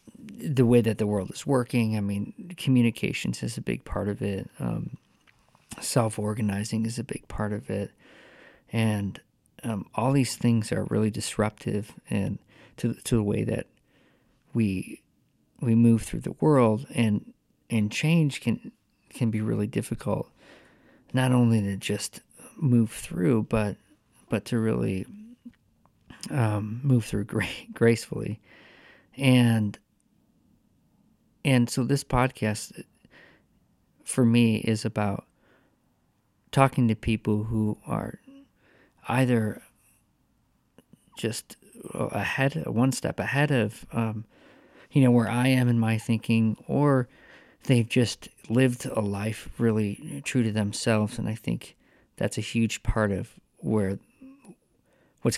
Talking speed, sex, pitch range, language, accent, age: 130 wpm, male, 105-125 Hz, English, American, 40-59